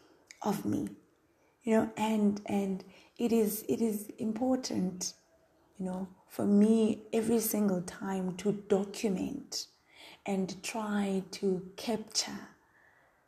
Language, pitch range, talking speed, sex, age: English, 185-235 Hz, 110 wpm, female, 20-39